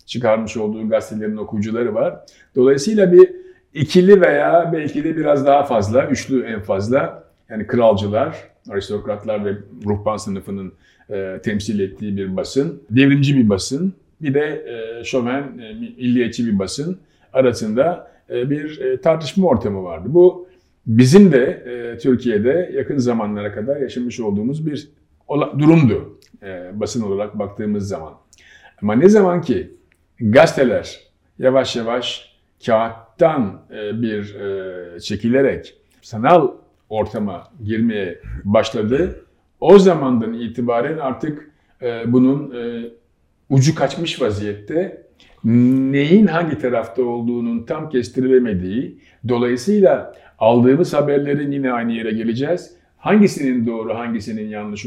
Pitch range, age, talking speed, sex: 110-145 Hz, 50-69, 110 wpm, male